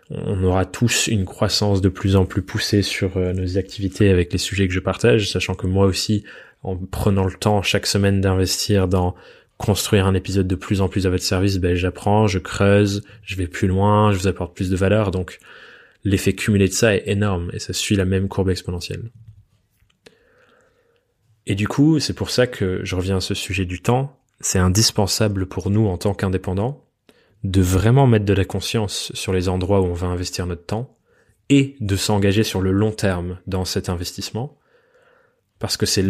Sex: male